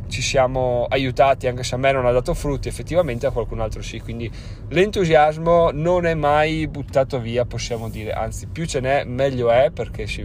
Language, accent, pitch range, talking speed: Italian, native, 115-135 Hz, 195 wpm